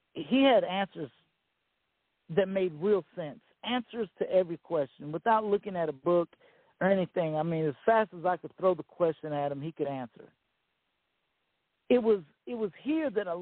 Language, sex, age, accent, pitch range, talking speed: English, male, 50-69, American, 160-200 Hz, 180 wpm